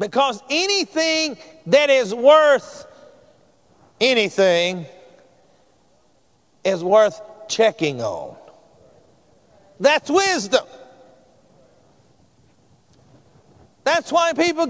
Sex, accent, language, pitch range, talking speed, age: male, American, English, 245-330 Hz, 60 wpm, 50-69